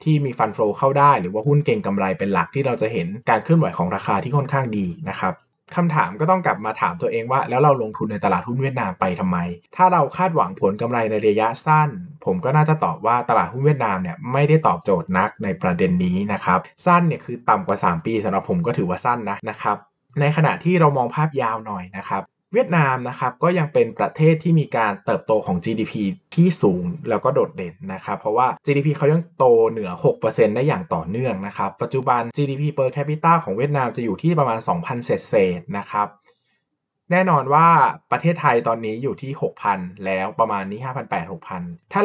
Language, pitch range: Thai, 110-165 Hz